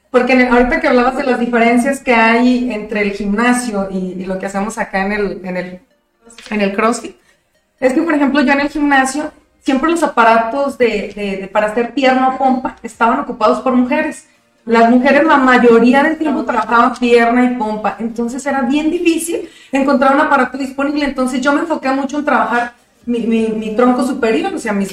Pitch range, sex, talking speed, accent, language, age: 220-270 Hz, female, 200 wpm, Mexican, Spanish, 30-49